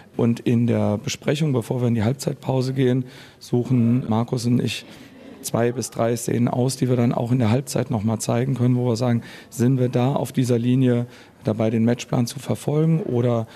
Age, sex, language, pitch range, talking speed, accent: 40-59, male, German, 115-135 Hz, 195 wpm, German